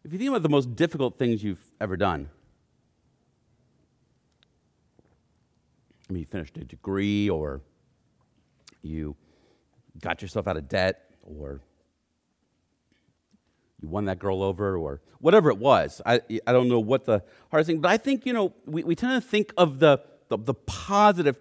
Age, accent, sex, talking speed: 40-59, American, male, 160 wpm